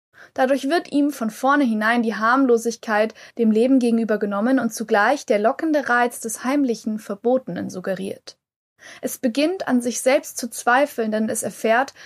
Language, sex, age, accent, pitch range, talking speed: German, female, 20-39, German, 220-275 Hz, 155 wpm